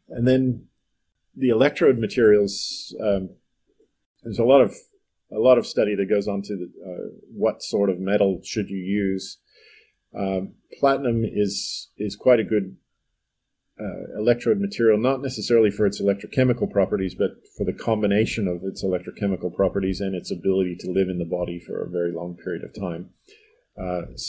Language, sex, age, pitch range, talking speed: English, male, 40-59, 90-110 Hz, 165 wpm